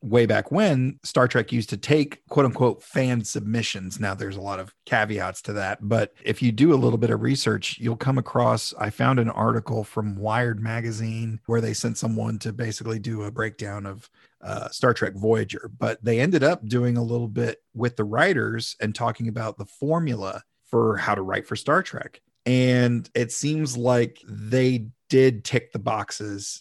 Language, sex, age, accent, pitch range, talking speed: English, male, 40-59, American, 105-120 Hz, 190 wpm